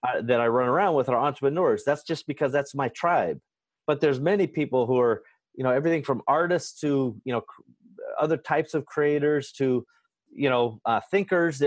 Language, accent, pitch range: English, American, 125-160 Hz